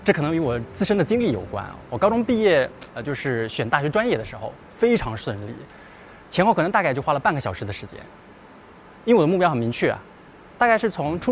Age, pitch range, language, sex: 20-39, 110-175 Hz, Chinese, male